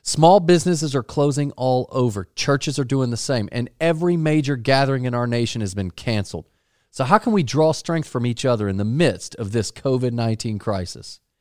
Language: English